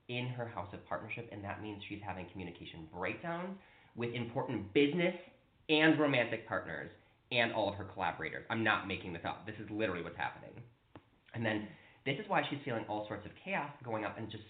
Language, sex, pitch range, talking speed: English, male, 95-130 Hz, 200 wpm